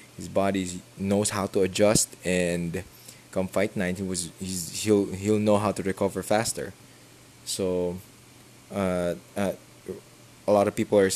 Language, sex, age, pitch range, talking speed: English, male, 20-39, 95-105 Hz, 150 wpm